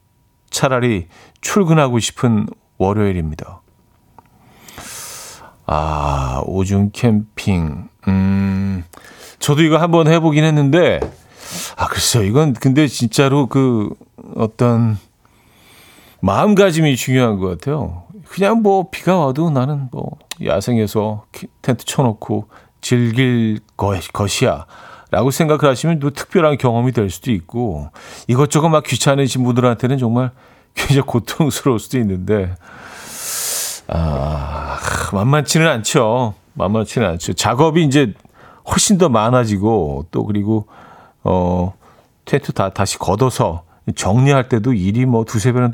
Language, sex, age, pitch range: Korean, male, 50-69, 100-140 Hz